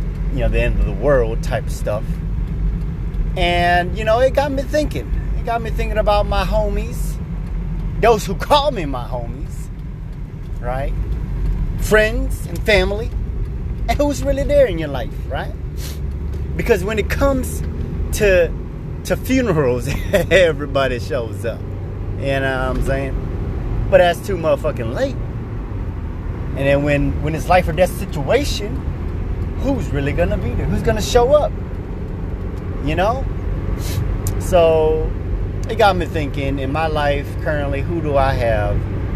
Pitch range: 95-130 Hz